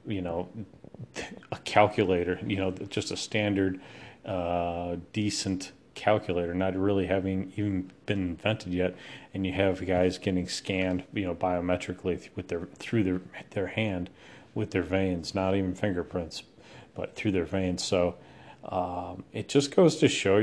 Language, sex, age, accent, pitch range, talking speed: English, male, 40-59, American, 95-115 Hz, 150 wpm